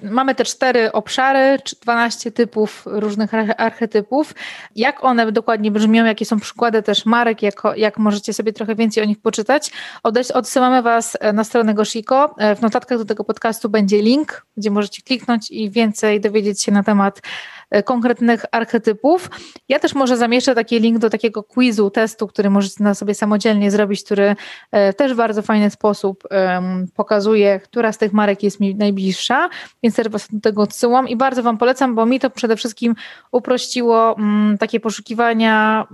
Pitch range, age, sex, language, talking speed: 210-240 Hz, 20-39, female, Polish, 160 wpm